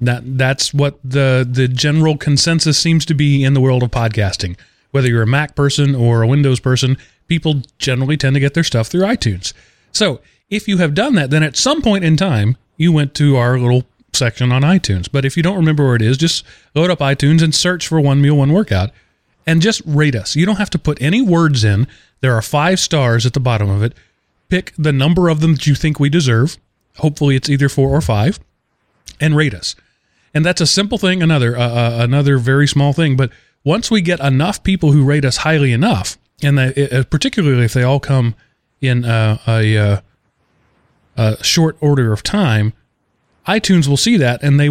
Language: English